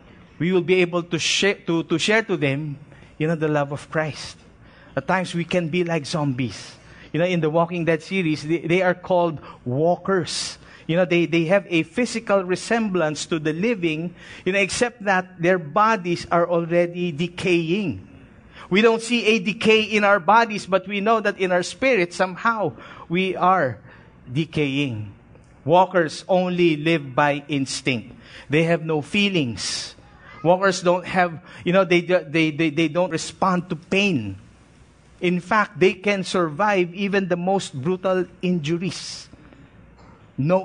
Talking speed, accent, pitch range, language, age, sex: 160 wpm, Filipino, 150-185 Hz, English, 50-69, male